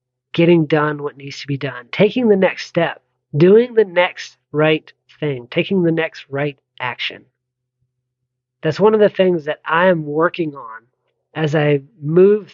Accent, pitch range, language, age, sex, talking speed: American, 130-180 Hz, English, 40-59, male, 165 wpm